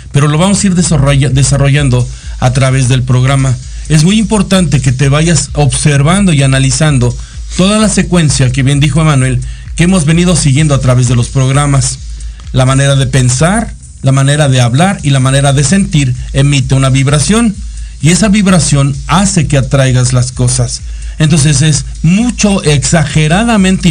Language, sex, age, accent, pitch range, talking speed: Spanish, male, 50-69, Mexican, 130-180 Hz, 160 wpm